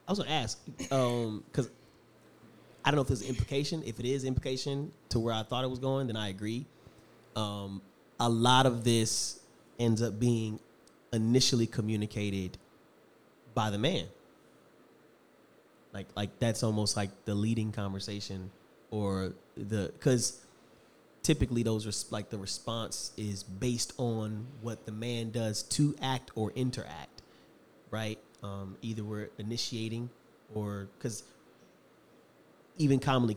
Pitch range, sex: 105-120 Hz, male